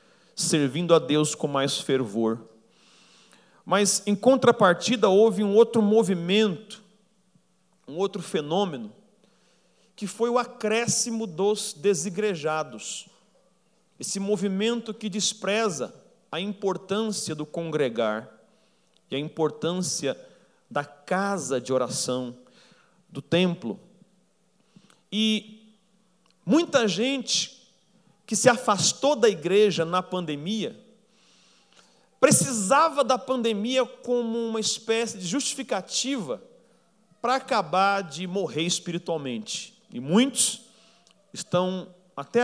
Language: Portuguese